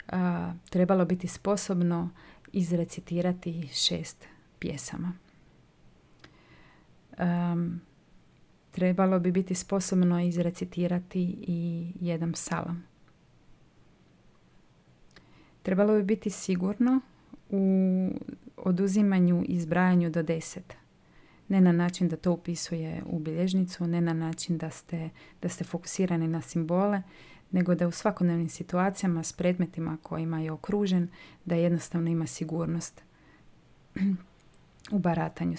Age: 30-49